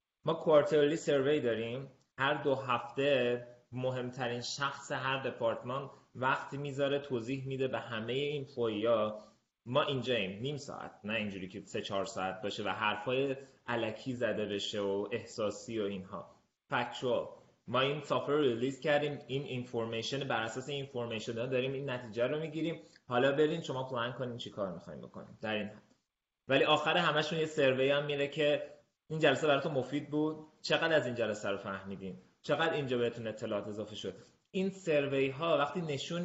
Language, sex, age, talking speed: Persian, male, 20-39, 160 wpm